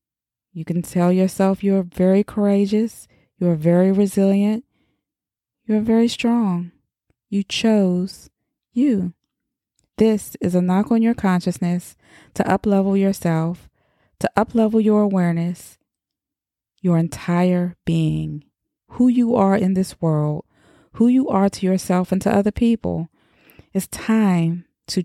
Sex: female